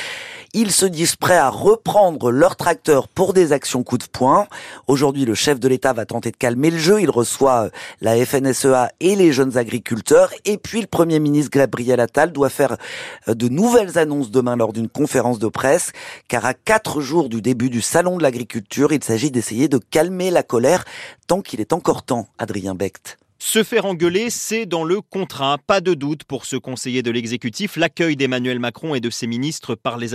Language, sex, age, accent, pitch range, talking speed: French, male, 30-49, French, 120-170 Hz, 195 wpm